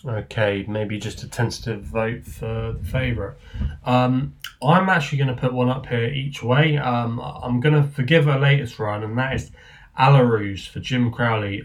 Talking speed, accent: 170 wpm, British